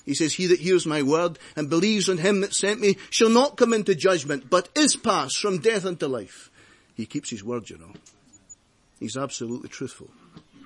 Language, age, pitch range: English, 50-69, 120-150 Hz